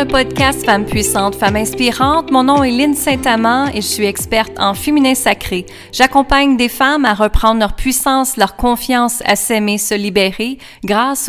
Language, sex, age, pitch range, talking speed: French, female, 30-49, 205-265 Hz, 165 wpm